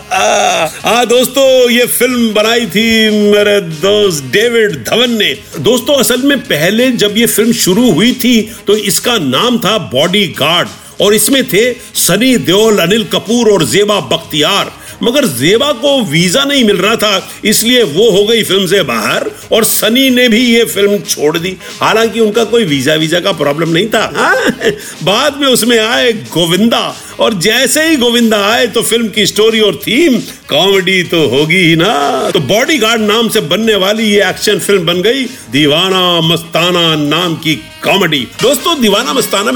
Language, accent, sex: Hindi, native, male